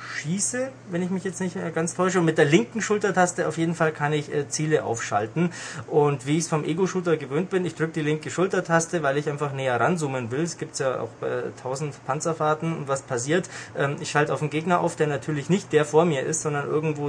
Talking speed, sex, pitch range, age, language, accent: 230 wpm, male, 135-165 Hz, 20-39, German, German